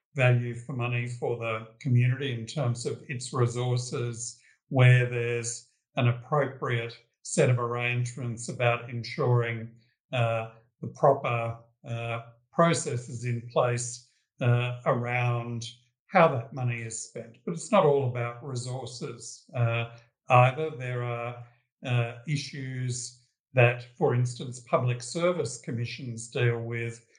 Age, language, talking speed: 60-79, English, 120 wpm